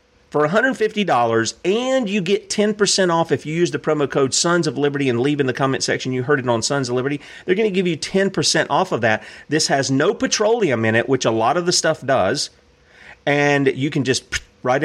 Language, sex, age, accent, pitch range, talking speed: English, male, 40-59, American, 125-170 Hz, 225 wpm